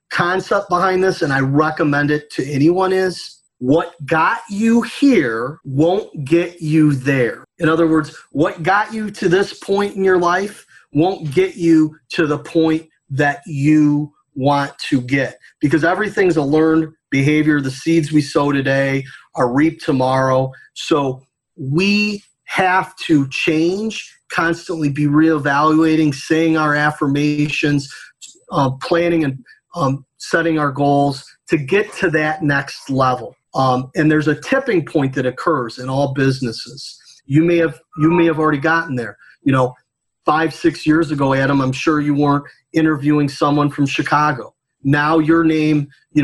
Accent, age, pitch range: American, 30-49, 145-175 Hz